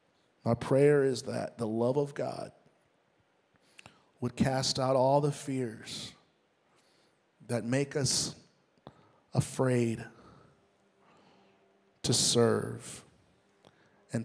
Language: English